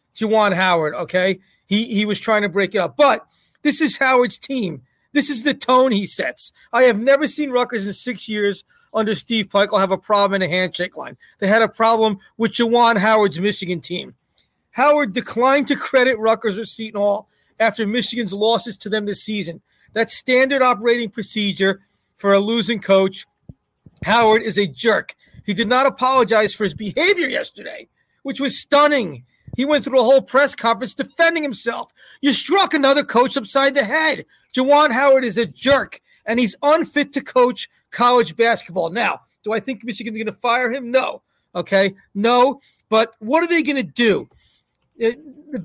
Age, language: 40-59, English